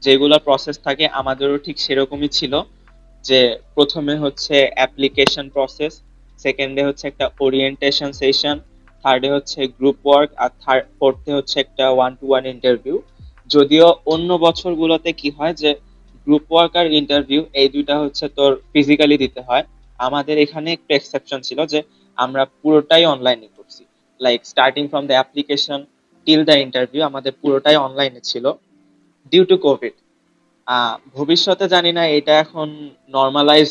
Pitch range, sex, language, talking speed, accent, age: 130-150 Hz, male, Bengali, 135 wpm, native, 20-39